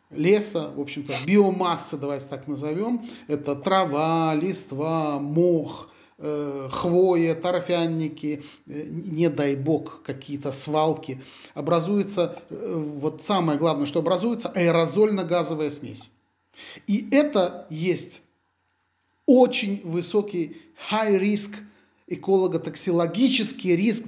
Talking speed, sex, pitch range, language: 95 wpm, male, 145-185 Hz, Russian